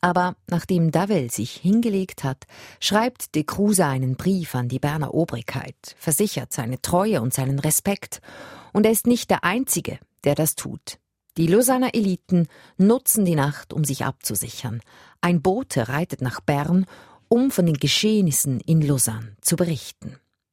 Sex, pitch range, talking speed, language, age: female, 130-195 Hz, 150 wpm, German, 40-59